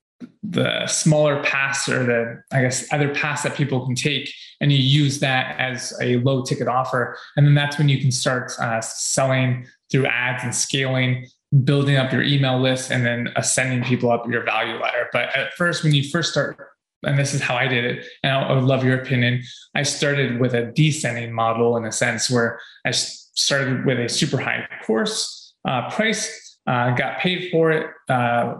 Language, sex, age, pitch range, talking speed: English, male, 20-39, 125-150 Hz, 195 wpm